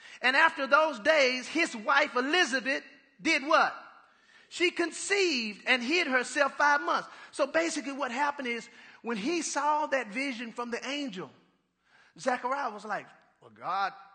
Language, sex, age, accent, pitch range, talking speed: English, male, 40-59, American, 205-310 Hz, 145 wpm